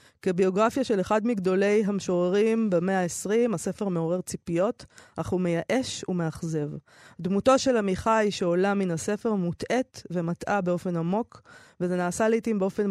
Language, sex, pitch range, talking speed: Hebrew, female, 180-230 Hz, 130 wpm